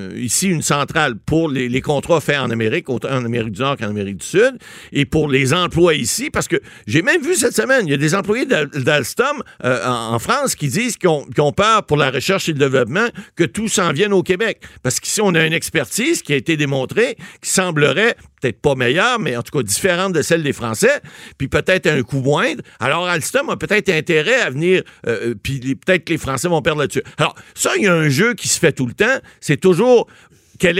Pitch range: 140-195 Hz